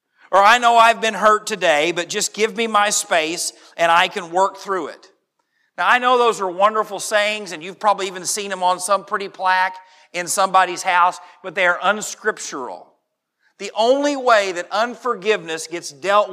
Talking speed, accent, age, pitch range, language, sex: 185 wpm, American, 40-59, 180-230 Hz, English, male